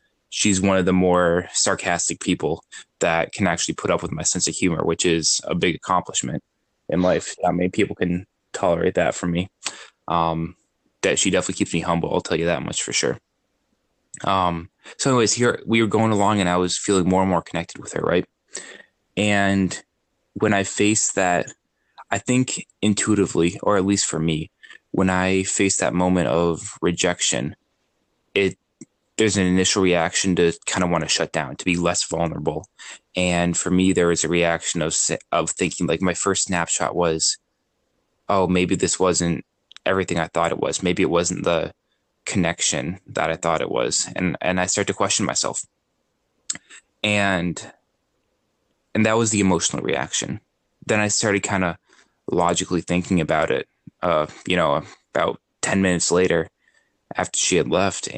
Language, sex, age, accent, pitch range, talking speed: English, male, 20-39, American, 85-100 Hz, 175 wpm